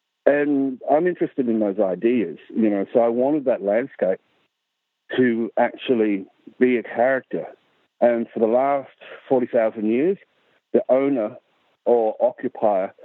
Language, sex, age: English, male, 60-79